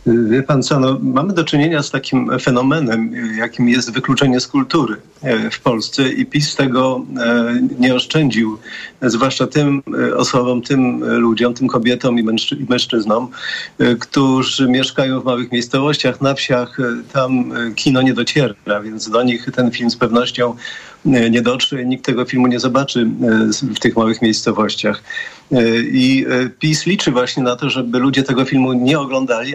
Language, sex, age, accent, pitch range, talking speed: Polish, male, 40-59, native, 115-135 Hz, 145 wpm